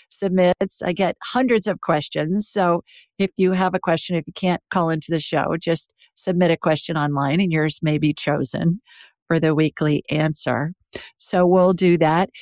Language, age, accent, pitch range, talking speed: English, 50-69, American, 160-195 Hz, 180 wpm